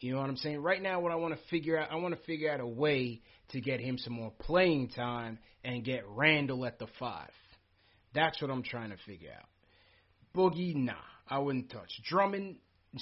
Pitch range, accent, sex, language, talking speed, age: 120-160 Hz, American, male, English, 210 wpm, 30-49